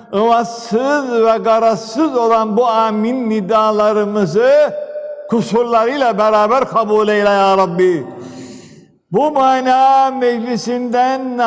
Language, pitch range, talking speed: Turkish, 220-250 Hz, 85 wpm